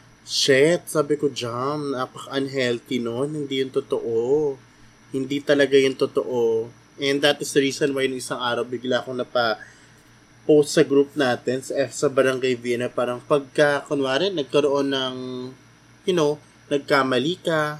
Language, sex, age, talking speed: Filipino, male, 20-39, 145 wpm